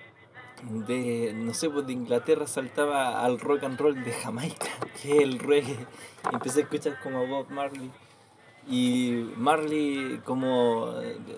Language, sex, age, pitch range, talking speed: Spanish, male, 20-39, 120-155 Hz, 140 wpm